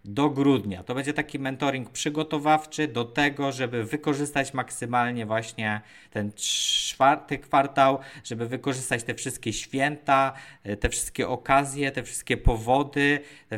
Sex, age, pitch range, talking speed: male, 20-39, 115-145 Hz, 125 wpm